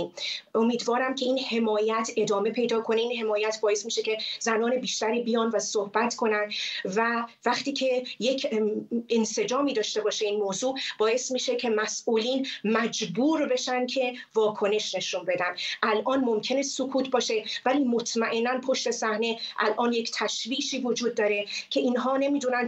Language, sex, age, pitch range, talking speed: Persian, female, 30-49, 215-255 Hz, 140 wpm